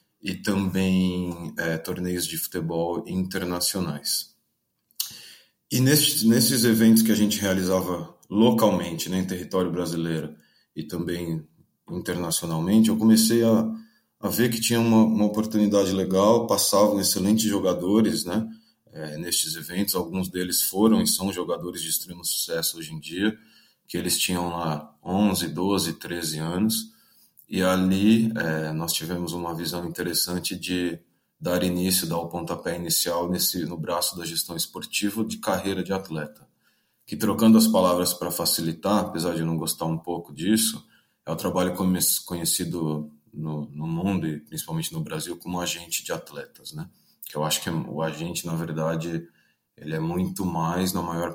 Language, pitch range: Portuguese, 85-105 Hz